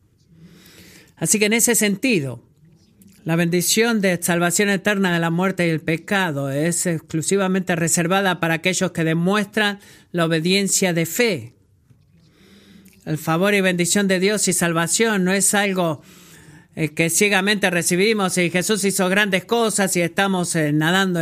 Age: 50-69